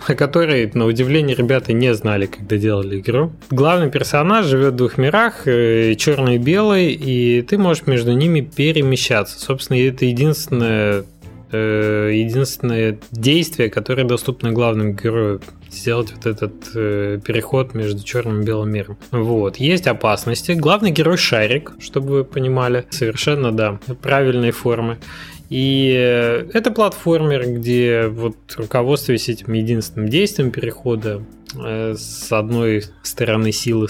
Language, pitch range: Russian, 110-140 Hz